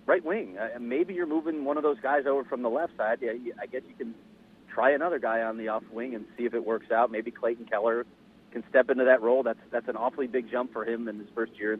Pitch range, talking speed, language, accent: 115-180 Hz, 280 wpm, English, American